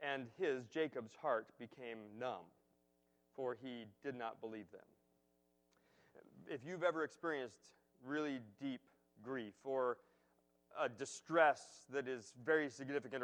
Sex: male